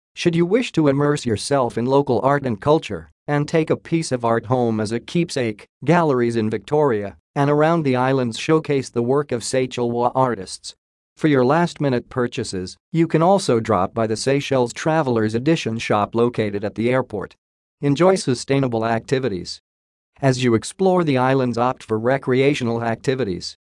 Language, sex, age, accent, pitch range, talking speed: English, male, 40-59, American, 115-145 Hz, 165 wpm